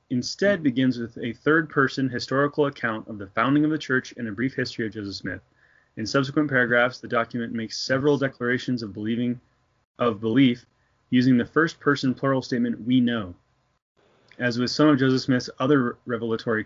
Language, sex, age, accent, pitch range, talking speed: English, male, 30-49, American, 115-140 Hz, 170 wpm